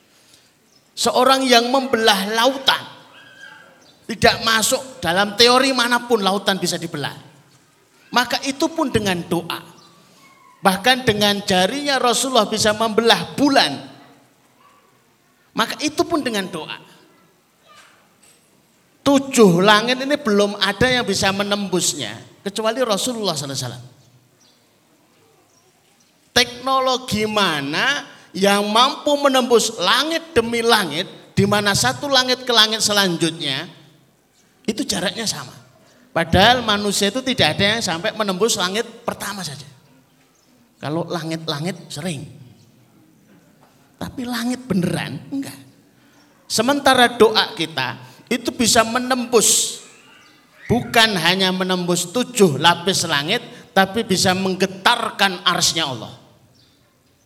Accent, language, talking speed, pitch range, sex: native, Indonesian, 95 wpm, 165-240 Hz, male